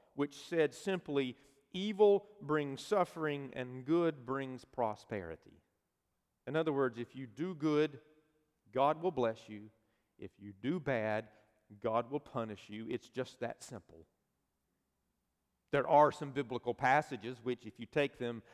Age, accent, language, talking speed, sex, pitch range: 40-59, American, English, 140 wpm, male, 125-180 Hz